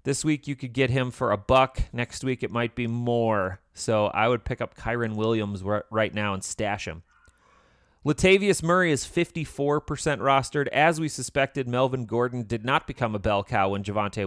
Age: 30-49